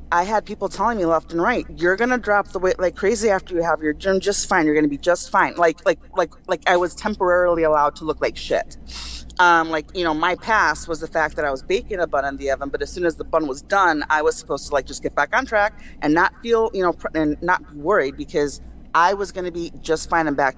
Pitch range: 160-195 Hz